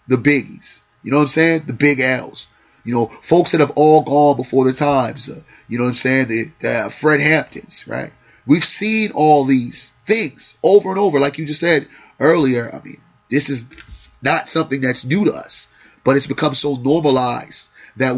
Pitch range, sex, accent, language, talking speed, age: 130-145 Hz, male, American, English, 200 wpm, 30-49